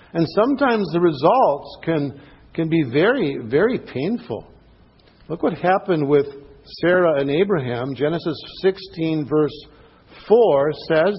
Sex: male